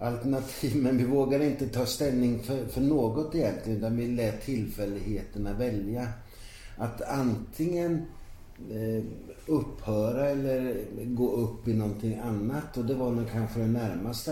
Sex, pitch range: male, 105-130 Hz